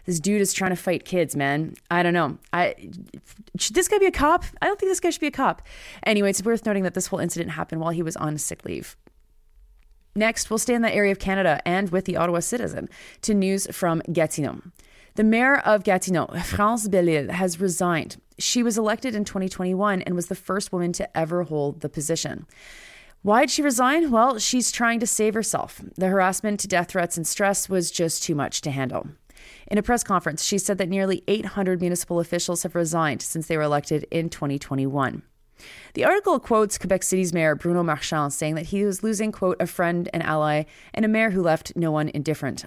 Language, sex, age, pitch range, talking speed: English, female, 30-49, 165-210 Hz, 210 wpm